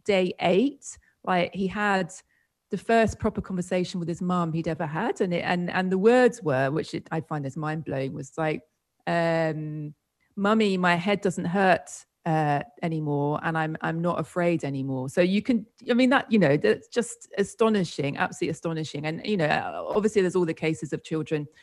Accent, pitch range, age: British, 155-195 Hz, 30-49